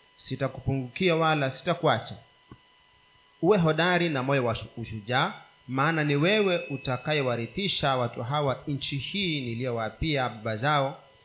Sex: male